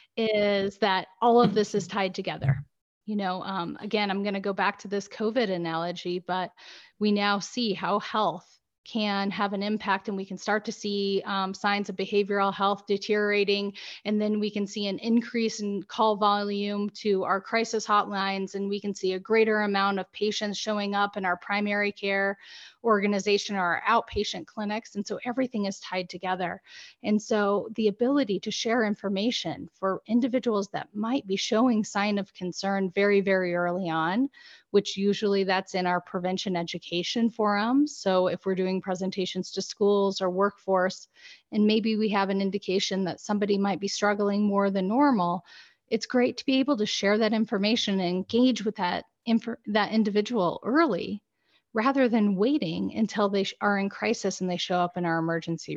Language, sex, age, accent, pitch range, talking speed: English, female, 30-49, American, 190-215 Hz, 180 wpm